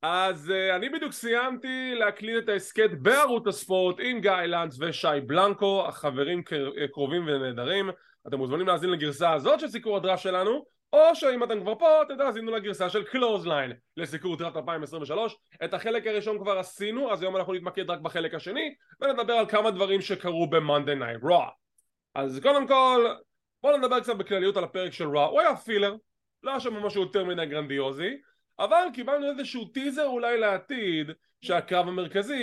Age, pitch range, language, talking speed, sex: 20-39, 170-225 Hz, English, 125 wpm, male